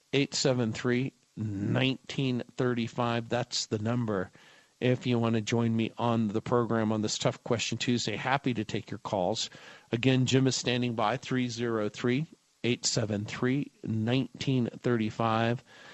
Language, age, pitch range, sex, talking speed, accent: English, 50-69, 115-135 Hz, male, 120 wpm, American